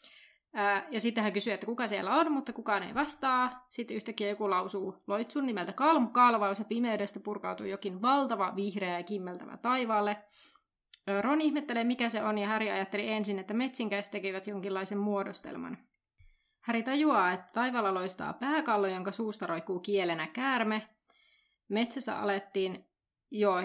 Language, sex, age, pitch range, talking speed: Finnish, female, 30-49, 200-250 Hz, 140 wpm